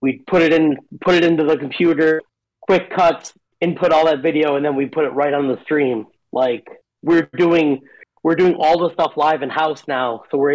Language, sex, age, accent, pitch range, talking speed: English, male, 30-49, American, 130-155 Hz, 215 wpm